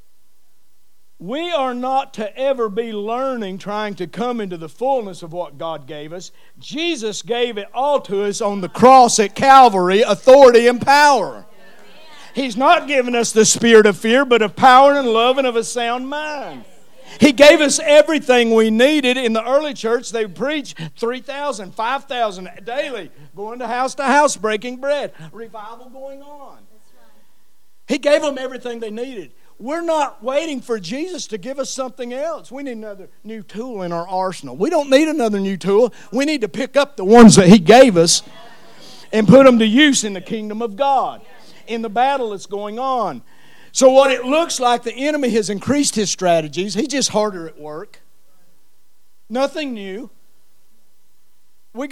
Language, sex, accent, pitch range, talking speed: English, male, American, 200-270 Hz, 175 wpm